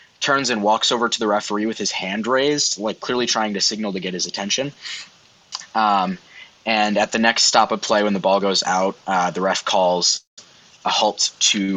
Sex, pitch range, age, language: male, 100-120 Hz, 20-39, English